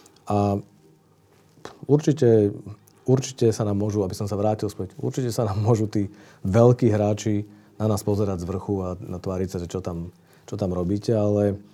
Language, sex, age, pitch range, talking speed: Slovak, male, 40-59, 95-115 Hz, 165 wpm